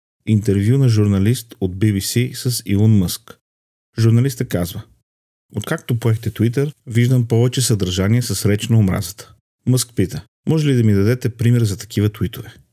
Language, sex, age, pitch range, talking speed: Bulgarian, male, 40-59, 100-120 Hz, 140 wpm